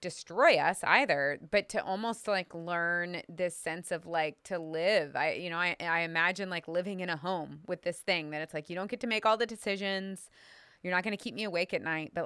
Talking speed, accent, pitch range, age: 240 wpm, American, 155-180 Hz, 20-39